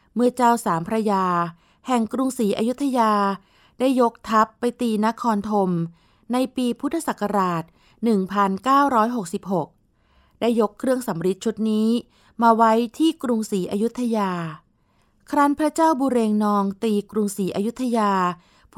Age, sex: 20-39, female